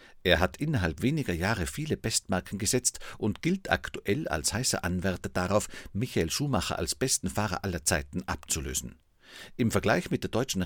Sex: male